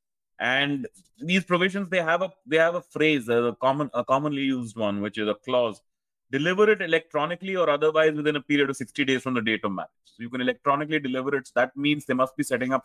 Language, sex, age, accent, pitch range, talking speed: English, male, 30-49, Indian, 125-175 Hz, 230 wpm